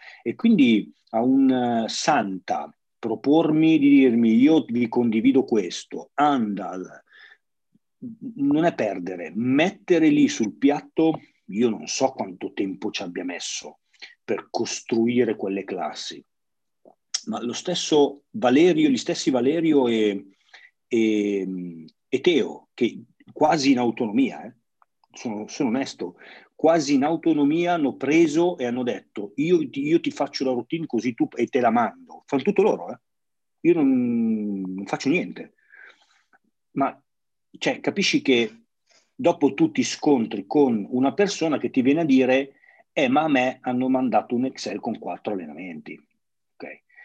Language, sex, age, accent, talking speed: Italian, male, 40-59, native, 135 wpm